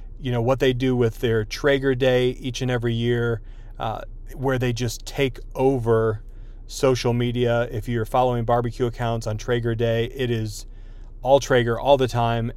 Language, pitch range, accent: English, 115-140 Hz, American